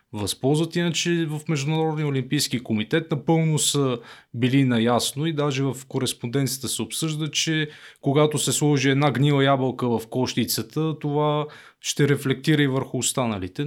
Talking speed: 135 wpm